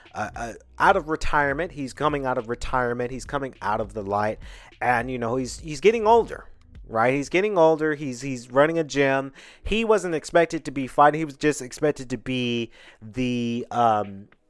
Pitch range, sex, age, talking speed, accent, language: 110-155 Hz, male, 30-49, 190 wpm, American, English